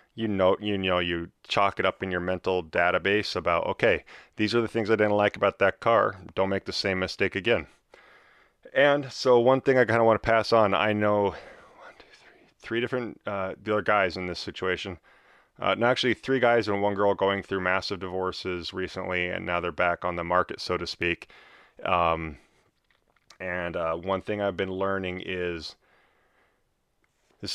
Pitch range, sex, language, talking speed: 90-105 Hz, male, English, 180 wpm